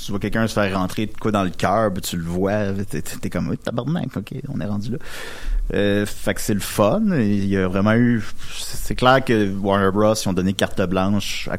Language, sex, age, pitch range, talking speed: French, male, 30-49, 95-115 Hz, 260 wpm